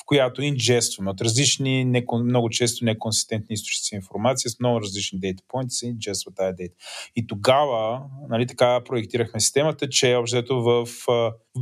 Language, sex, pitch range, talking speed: Bulgarian, male, 105-125 Hz, 140 wpm